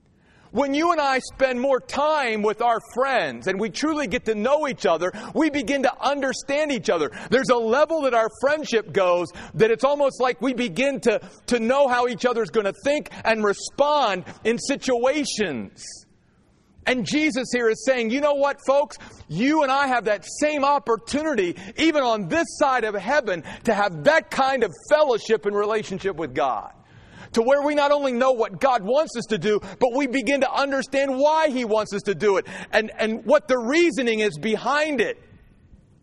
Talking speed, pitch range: 190 wpm, 170-275 Hz